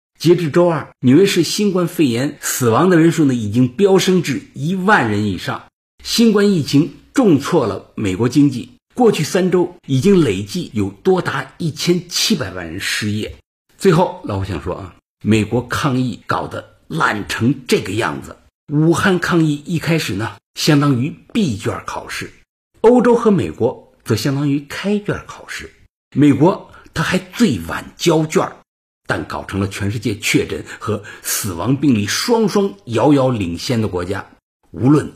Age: 50-69